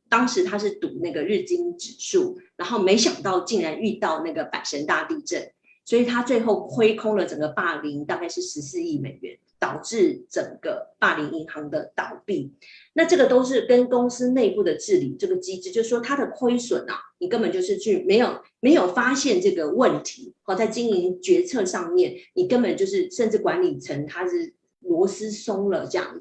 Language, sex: Chinese, female